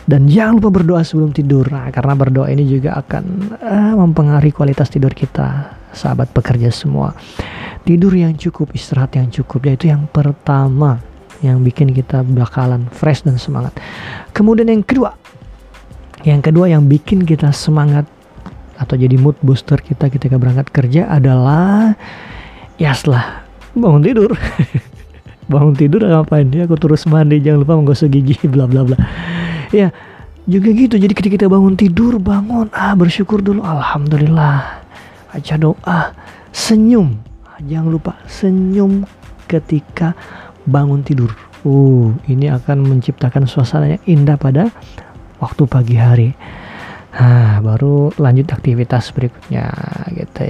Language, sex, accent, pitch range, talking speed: Indonesian, male, native, 135-170 Hz, 130 wpm